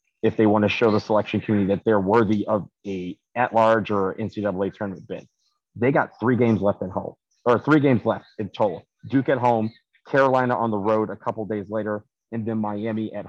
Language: English